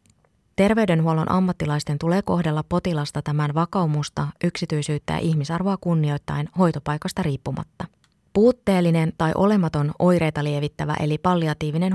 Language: Finnish